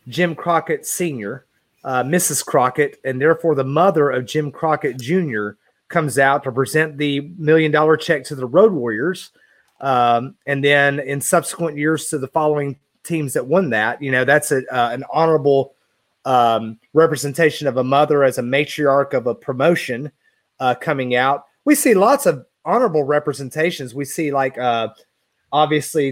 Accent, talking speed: American, 160 wpm